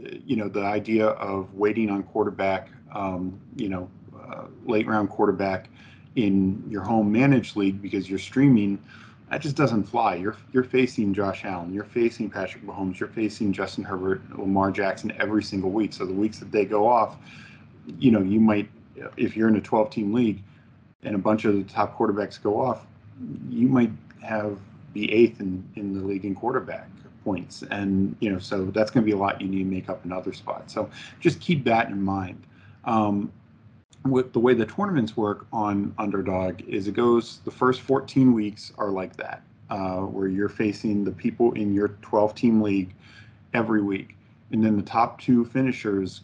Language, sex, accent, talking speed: English, male, American, 185 wpm